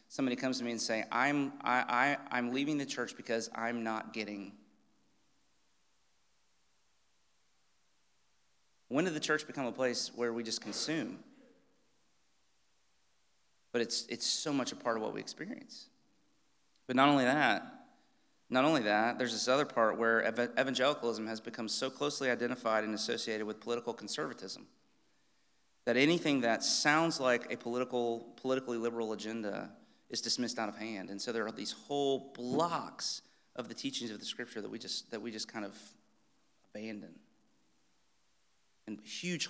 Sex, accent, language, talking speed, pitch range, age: male, American, English, 150 wpm, 110-130 Hz, 30-49